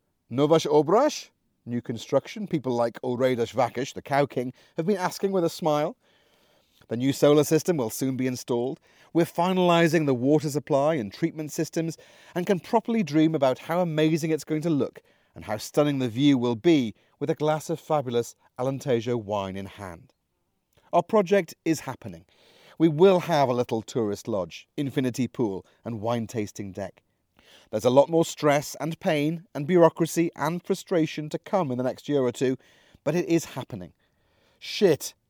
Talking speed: 170 wpm